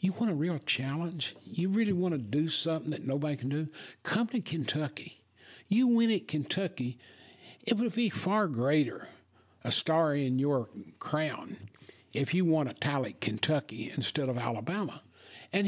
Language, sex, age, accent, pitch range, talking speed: English, male, 60-79, American, 130-170 Hz, 165 wpm